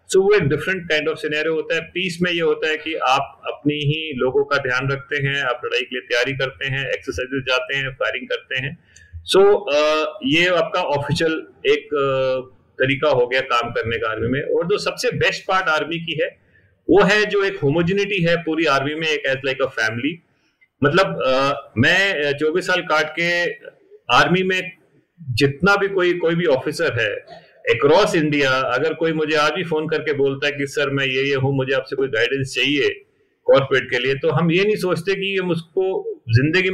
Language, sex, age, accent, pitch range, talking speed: Hindi, male, 40-59, native, 140-200 Hz, 200 wpm